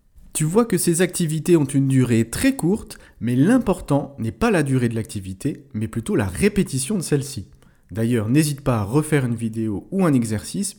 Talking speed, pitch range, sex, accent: 190 wpm, 120-175 Hz, male, French